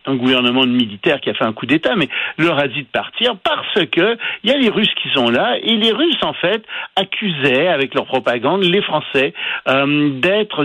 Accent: French